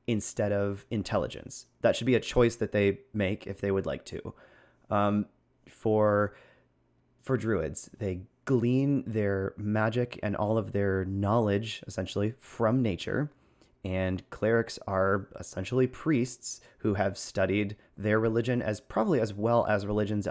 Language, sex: English, male